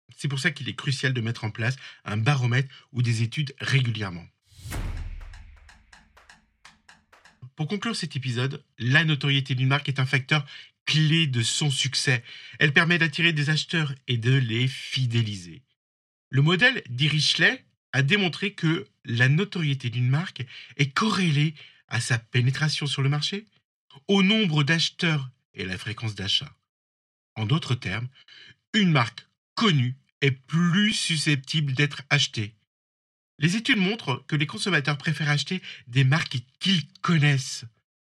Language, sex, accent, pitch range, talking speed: French, male, French, 120-155 Hz, 140 wpm